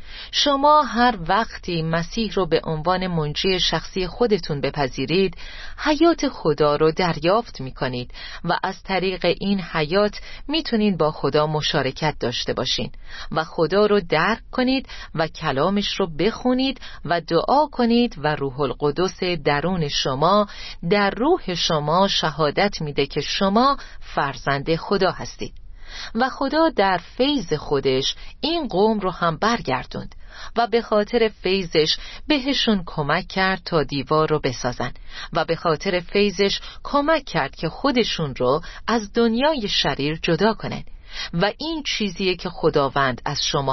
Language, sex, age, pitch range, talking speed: Persian, female, 40-59, 150-225 Hz, 130 wpm